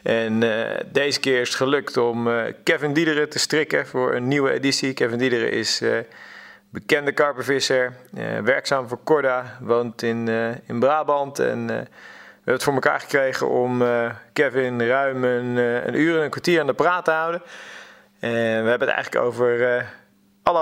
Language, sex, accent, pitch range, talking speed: Dutch, male, Dutch, 120-150 Hz, 185 wpm